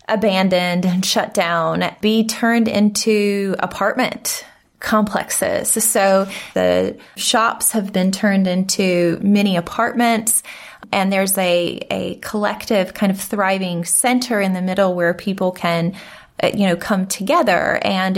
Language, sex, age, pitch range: English, female, 20-39, 185-220 Hz